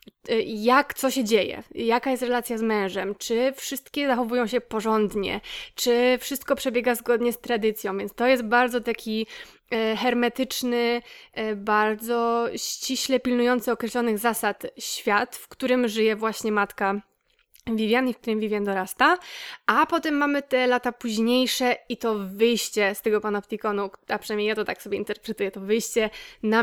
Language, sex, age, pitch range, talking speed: Polish, female, 20-39, 215-245 Hz, 145 wpm